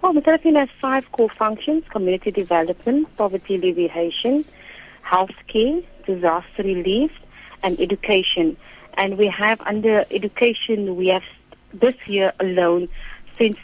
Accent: Indian